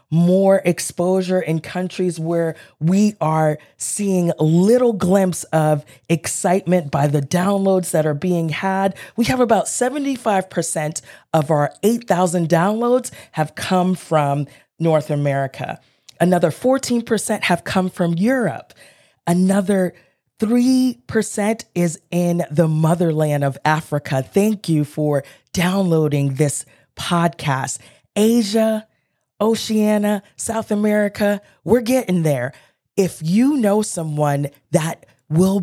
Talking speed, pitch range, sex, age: 110 wpm, 155-205 Hz, female, 30-49